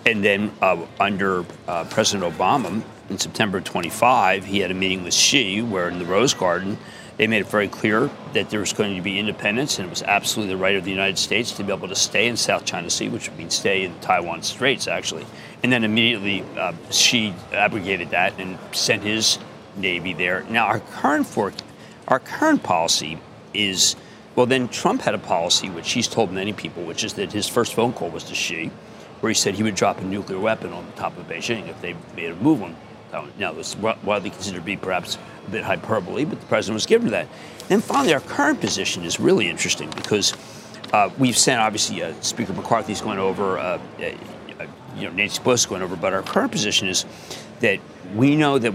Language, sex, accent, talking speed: English, male, American, 215 wpm